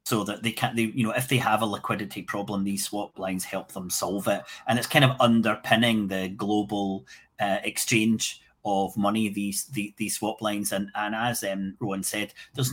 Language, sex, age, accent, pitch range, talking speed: English, male, 30-49, British, 100-130 Hz, 205 wpm